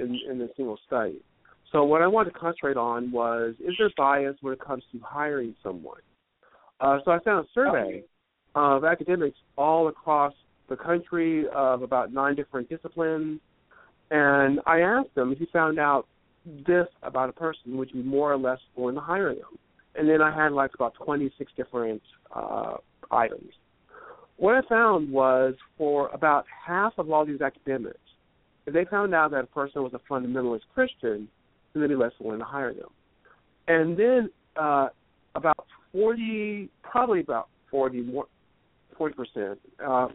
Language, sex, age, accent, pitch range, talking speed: English, male, 50-69, American, 130-170 Hz, 165 wpm